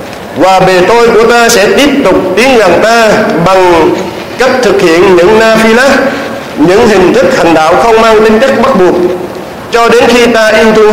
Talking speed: 190 wpm